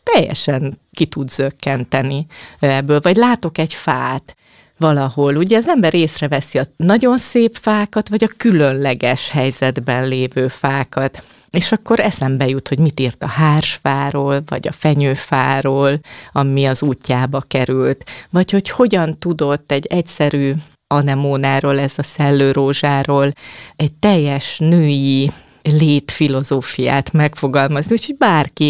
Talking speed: 120 wpm